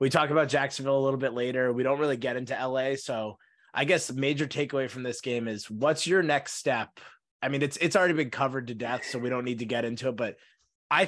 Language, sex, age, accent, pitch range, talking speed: English, male, 20-39, American, 125-150 Hz, 255 wpm